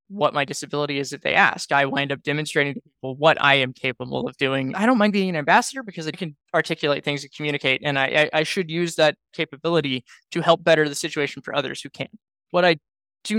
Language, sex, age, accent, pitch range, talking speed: English, male, 20-39, American, 145-190 Hz, 235 wpm